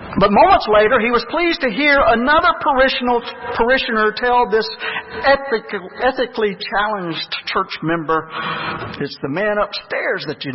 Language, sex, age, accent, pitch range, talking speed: English, male, 50-69, American, 160-240 Hz, 125 wpm